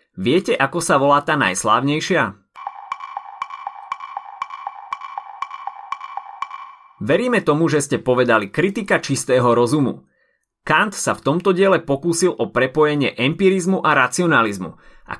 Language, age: Slovak, 30-49